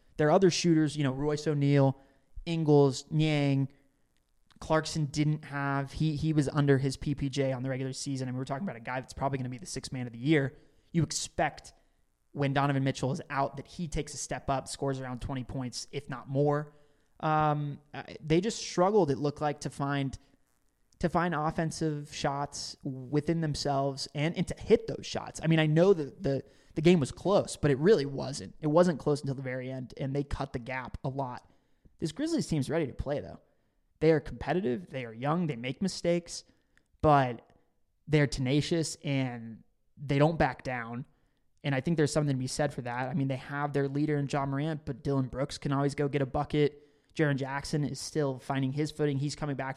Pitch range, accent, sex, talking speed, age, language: 135-155 Hz, American, male, 210 wpm, 20-39, English